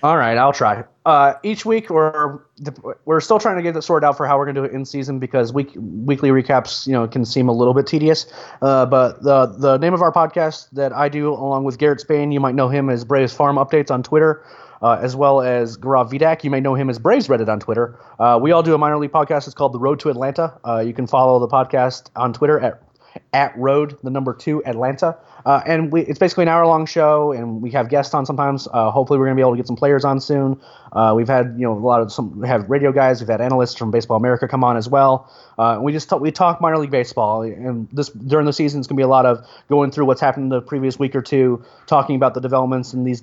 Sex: male